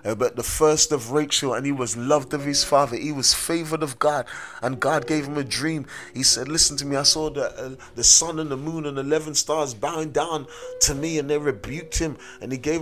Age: 30-49